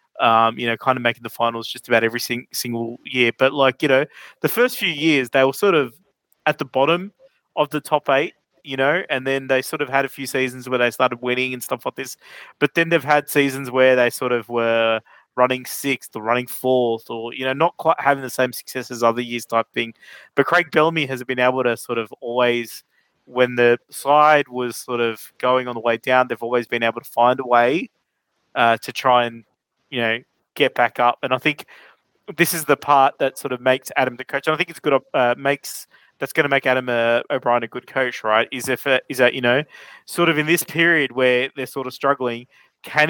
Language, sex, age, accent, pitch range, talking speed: English, male, 20-39, Australian, 120-145 Hz, 235 wpm